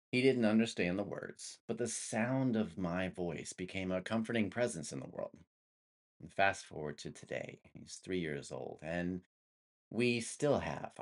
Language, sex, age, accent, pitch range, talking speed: English, male, 30-49, American, 75-110 Hz, 165 wpm